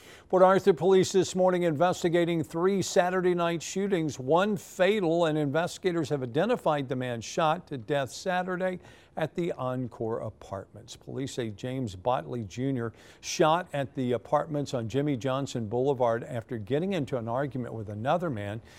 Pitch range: 125-165 Hz